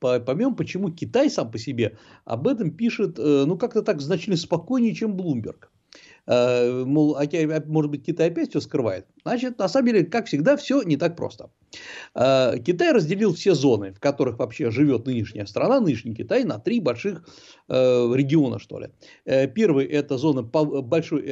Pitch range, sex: 125-175 Hz, male